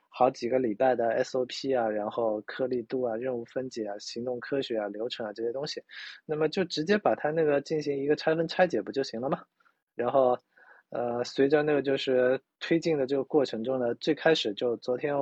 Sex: male